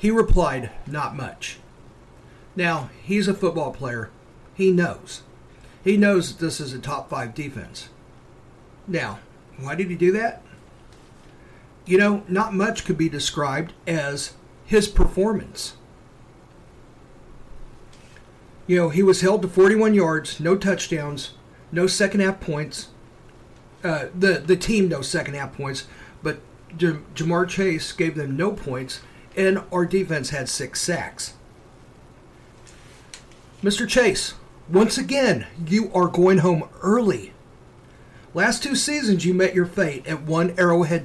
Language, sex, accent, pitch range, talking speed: English, male, American, 155-200 Hz, 125 wpm